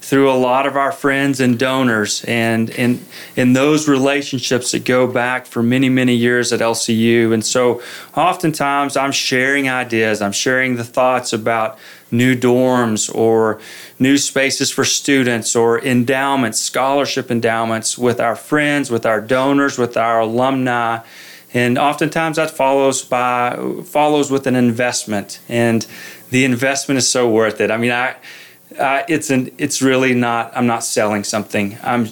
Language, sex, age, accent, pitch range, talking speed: English, male, 30-49, American, 115-135 Hz, 155 wpm